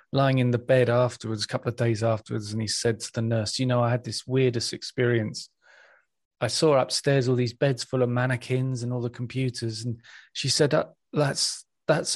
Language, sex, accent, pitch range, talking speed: English, male, British, 120-145 Hz, 200 wpm